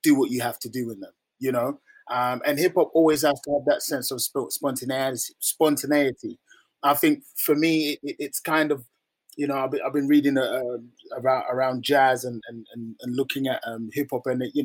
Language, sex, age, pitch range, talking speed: English, male, 20-39, 125-155 Hz, 200 wpm